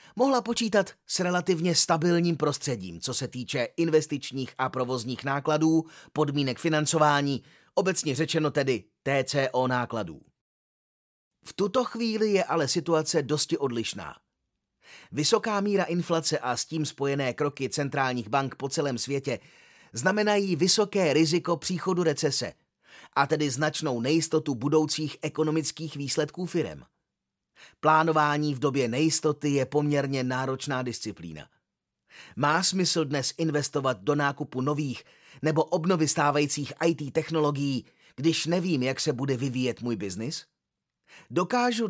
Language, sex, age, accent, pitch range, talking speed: Czech, male, 30-49, native, 135-170 Hz, 115 wpm